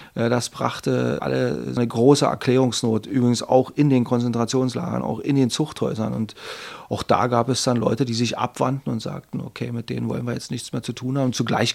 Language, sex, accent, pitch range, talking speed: German, male, German, 115-130 Hz, 205 wpm